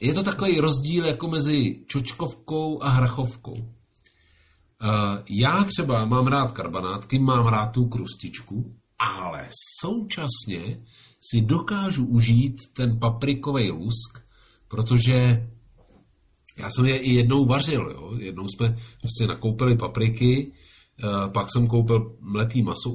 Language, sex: Czech, male